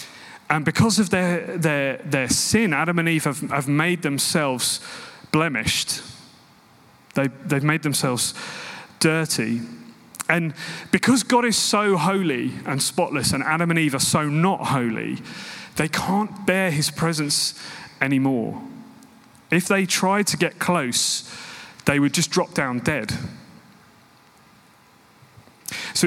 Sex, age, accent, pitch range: male, 30-49, British, 140-190 Hz